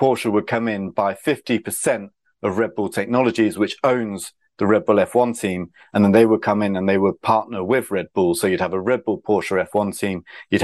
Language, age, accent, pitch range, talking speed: English, 30-49, British, 100-125 Hz, 225 wpm